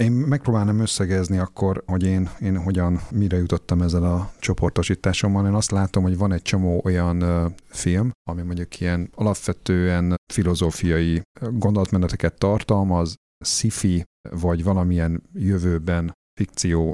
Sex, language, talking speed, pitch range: male, Hungarian, 120 wpm, 85-100 Hz